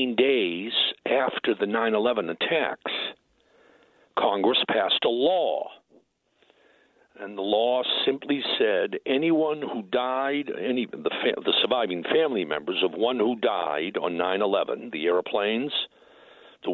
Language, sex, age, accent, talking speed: English, male, 60-79, American, 110 wpm